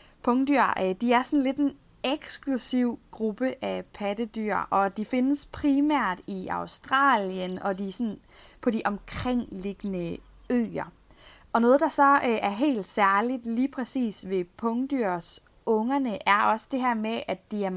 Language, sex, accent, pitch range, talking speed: Danish, female, native, 200-255 Hz, 145 wpm